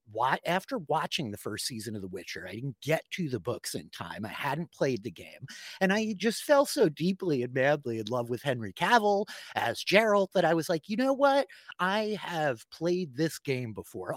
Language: English